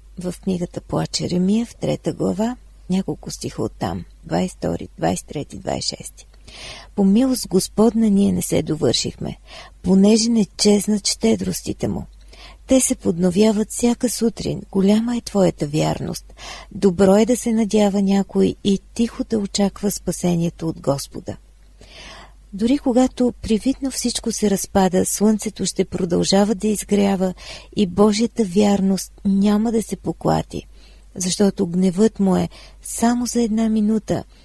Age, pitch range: 40-59, 185-225 Hz